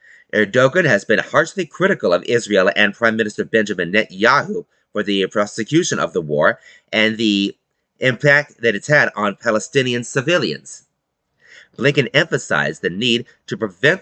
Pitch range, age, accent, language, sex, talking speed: 110-155 Hz, 30-49, American, English, male, 140 wpm